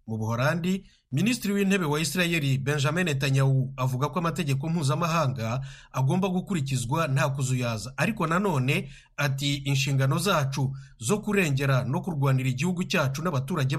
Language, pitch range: English, 130-170 Hz